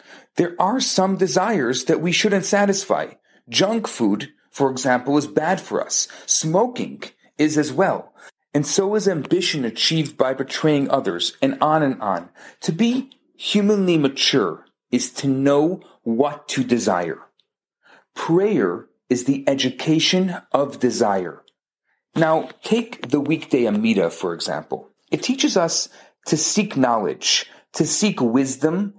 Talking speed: 135 wpm